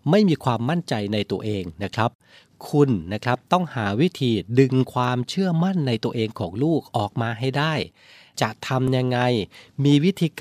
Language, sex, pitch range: Thai, male, 110-145 Hz